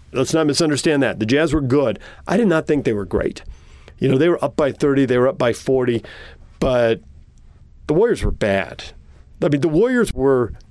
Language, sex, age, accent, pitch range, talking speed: English, male, 40-59, American, 110-150 Hz, 205 wpm